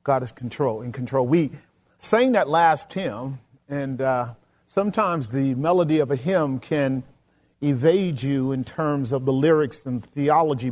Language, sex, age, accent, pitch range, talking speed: English, male, 40-59, American, 145-180 Hz, 155 wpm